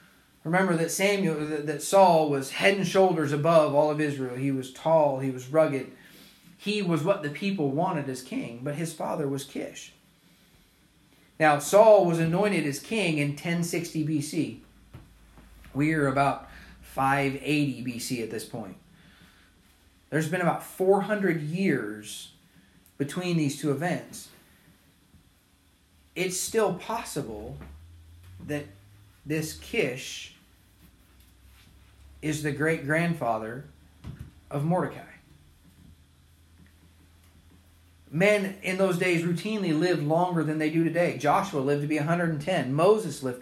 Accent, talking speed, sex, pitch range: American, 120 wpm, male, 125-180 Hz